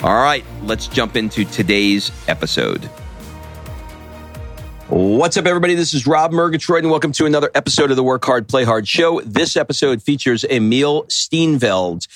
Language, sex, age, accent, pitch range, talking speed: English, male, 40-59, American, 105-140 Hz, 155 wpm